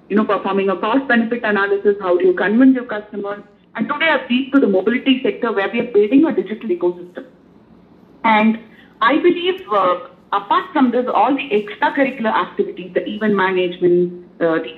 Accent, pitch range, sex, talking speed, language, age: Indian, 195-265 Hz, female, 175 wpm, English, 50-69